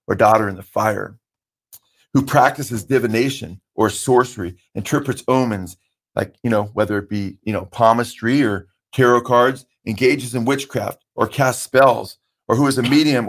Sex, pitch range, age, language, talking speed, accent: male, 110-135 Hz, 40-59, English, 160 wpm, American